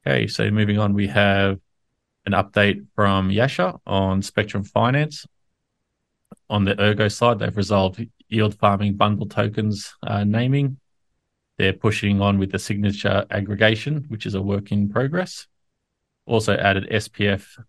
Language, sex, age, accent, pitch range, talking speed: English, male, 20-39, Australian, 100-110 Hz, 140 wpm